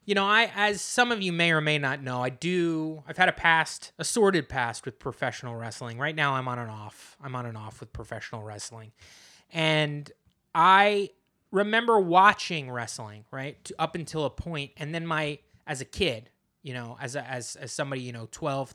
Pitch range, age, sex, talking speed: 120-165 Hz, 20-39, male, 200 wpm